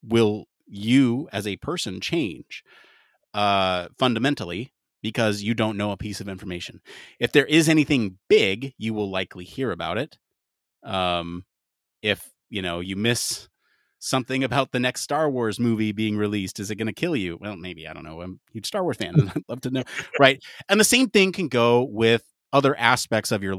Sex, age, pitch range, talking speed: male, 30-49, 105-140 Hz, 190 wpm